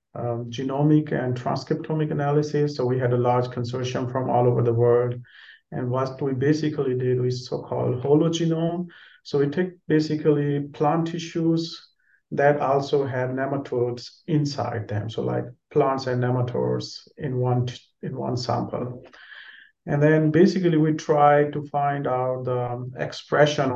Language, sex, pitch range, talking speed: English, male, 125-150 Hz, 140 wpm